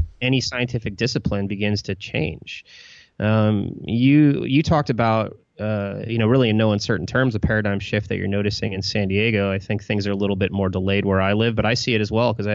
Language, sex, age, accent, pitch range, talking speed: English, male, 20-39, American, 100-120 Hz, 230 wpm